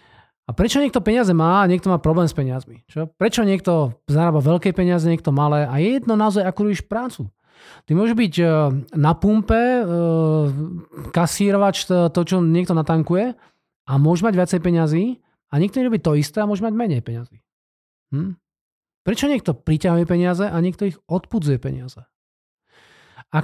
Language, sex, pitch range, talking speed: Slovak, male, 155-195 Hz, 160 wpm